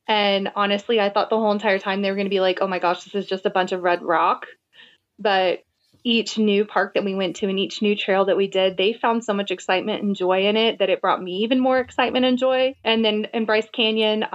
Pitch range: 195-230 Hz